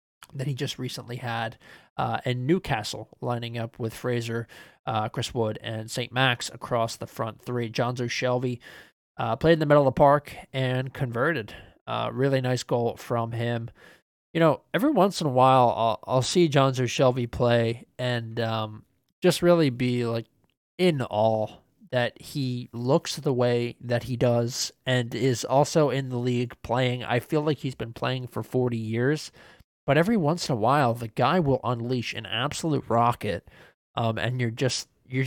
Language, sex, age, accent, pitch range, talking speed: English, male, 20-39, American, 115-135 Hz, 175 wpm